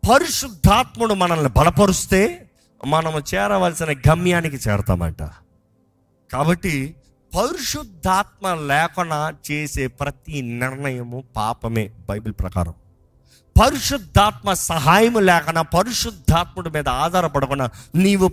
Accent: native